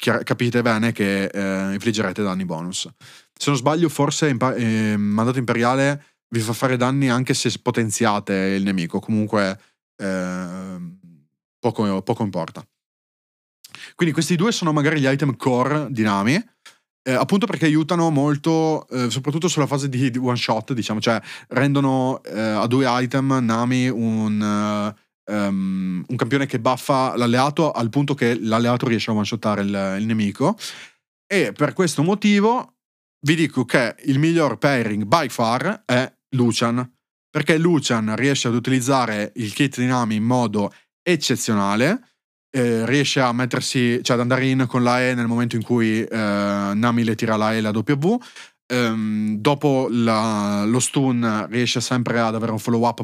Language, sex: Italian, male